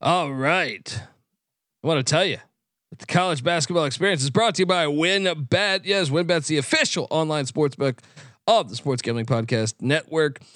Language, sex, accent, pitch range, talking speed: English, male, American, 130-155 Hz, 170 wpm